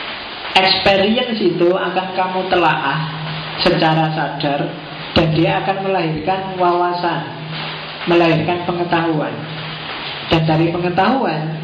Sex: male